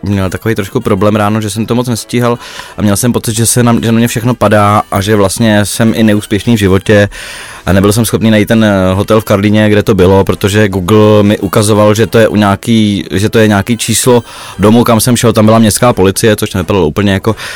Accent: native